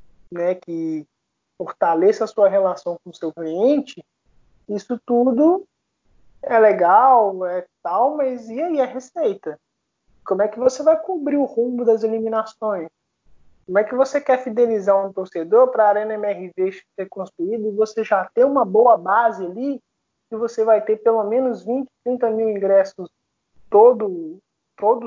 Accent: Brazilian